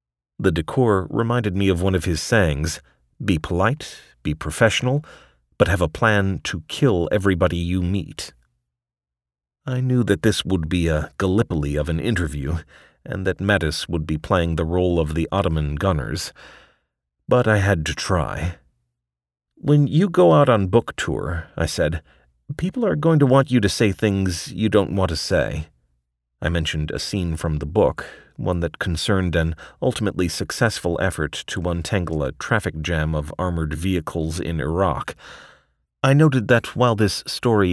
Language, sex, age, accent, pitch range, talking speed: English, male, 40-59, American, 75-105 Hz, 165 wpm